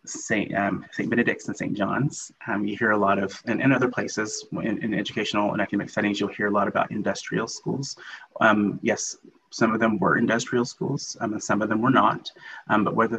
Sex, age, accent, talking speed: male, 30-49, American, 215 wpm